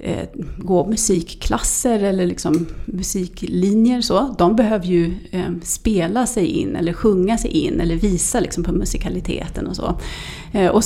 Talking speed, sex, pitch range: 115 wpm, female, 175-225 Hz